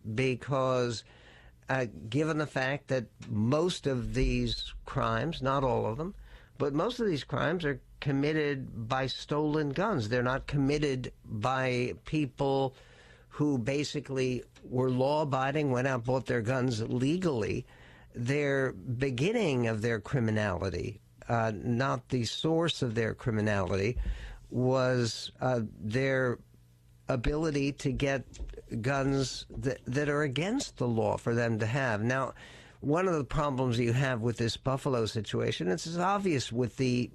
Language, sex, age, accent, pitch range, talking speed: English, male, 60-79, American, 120-145 Hz, 135 wpm